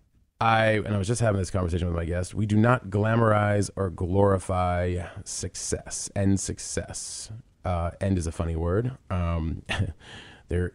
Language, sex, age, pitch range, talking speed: English, male, 30-49, 85-100 Hz, 155 wpm